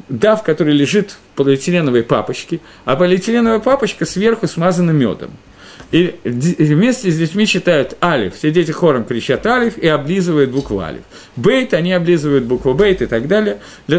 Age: 40-59